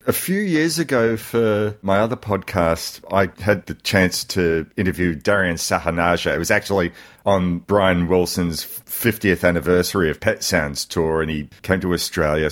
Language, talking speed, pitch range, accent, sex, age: English, 160 wpm, 90-110 Hz, Australian, male, 40-59